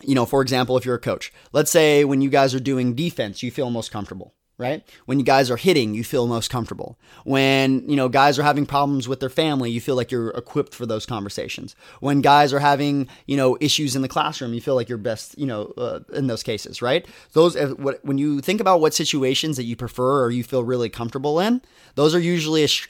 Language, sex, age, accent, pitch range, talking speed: English, male, 20-39, American, 125-145 Hz, 240 wpm